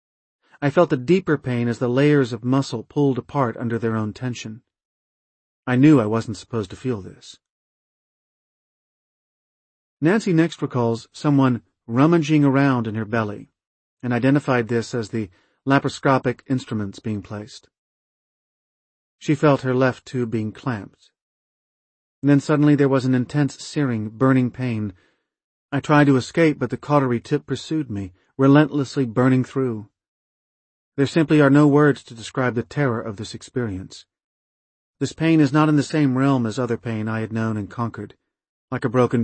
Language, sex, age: English, male, 40-59